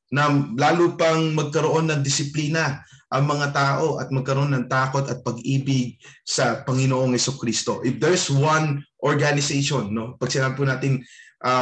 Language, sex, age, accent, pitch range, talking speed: Filipino, male, 20-39, native, 130-155 Hz, 130 wpm